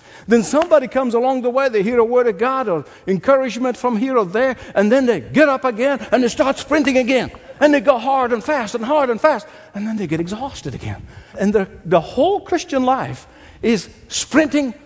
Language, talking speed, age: English, 215 wpm, 60-79